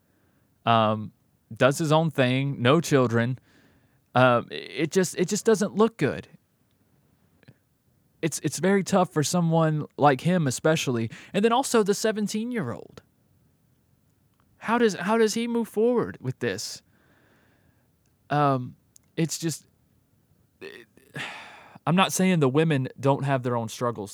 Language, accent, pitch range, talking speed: English, American, 120-155 Hz, 135 wpm